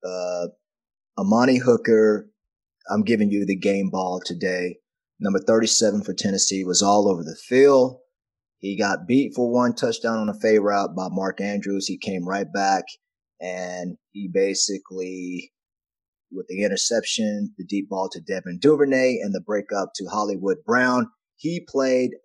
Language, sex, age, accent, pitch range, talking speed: English, male, 30-49, American, 105-135 Hz, 150 wpm